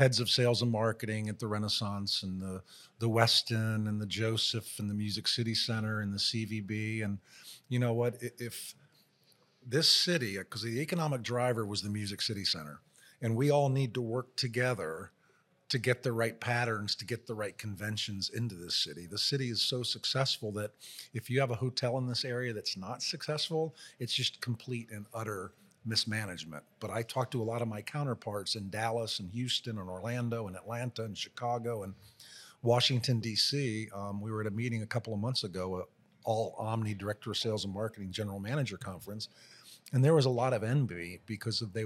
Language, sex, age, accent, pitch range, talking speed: English, male, 40-59, American, 105-125 Hz, 195 wpm